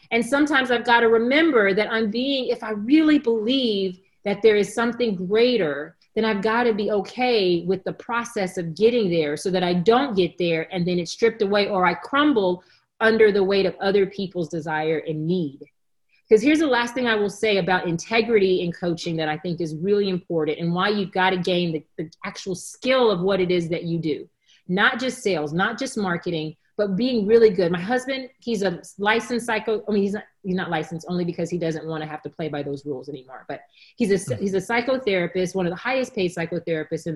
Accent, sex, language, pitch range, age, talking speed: American, female, English, 175-230 Hz, 40-59, 220 wpm